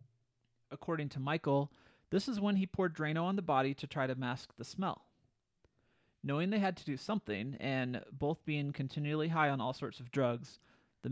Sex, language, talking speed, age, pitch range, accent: male, English, 190 wpm, 30-49, 125-155 Hz, American